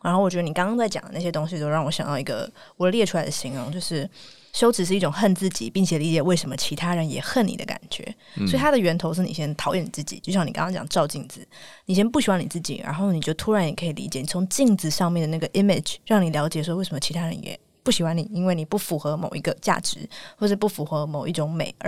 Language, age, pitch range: Chinese, 20-39, 160-200 Hz